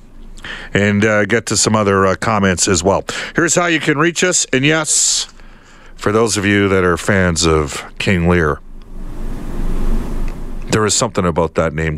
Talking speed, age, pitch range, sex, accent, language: 170 wpm, 50-69, 110-135 Hz, male, American, English